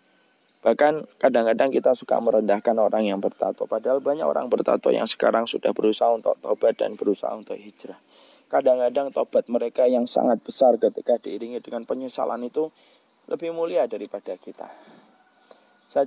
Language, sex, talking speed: English, male, 140 wpm